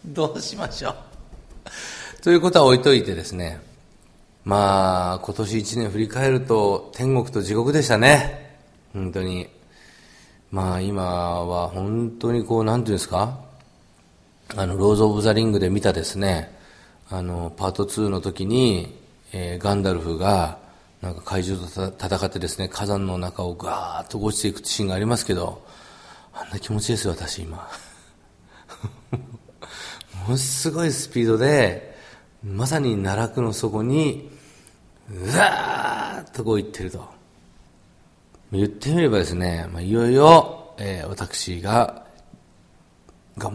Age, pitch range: 40-59, 90-115 Hz